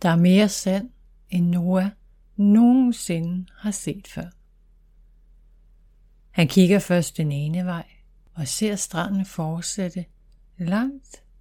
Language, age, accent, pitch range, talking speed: Danish, 60-79, native, 160-195 Hz, 110 wpm